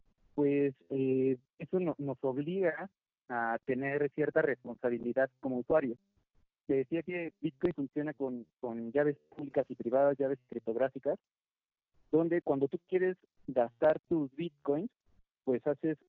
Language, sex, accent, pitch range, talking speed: Spanish, male, Mexican, 125-150 Hz, 125 wpm